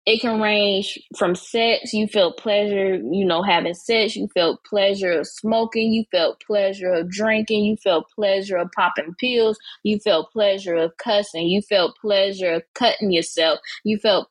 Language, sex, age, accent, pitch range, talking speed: English, female, 10-29, American, 200-250 Hz, 170 wpm